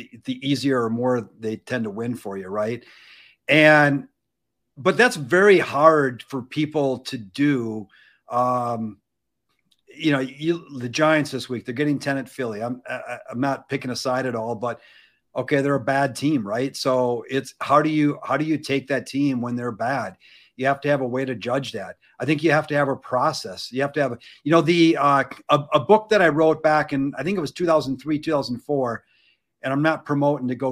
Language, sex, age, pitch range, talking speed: English, male, 50-69, 125-155 Hz, 215 wpm